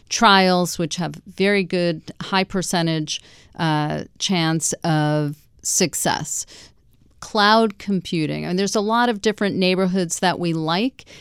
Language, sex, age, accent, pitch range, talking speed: English, female, 40-59, American, 170-205 Hz, 130 wpm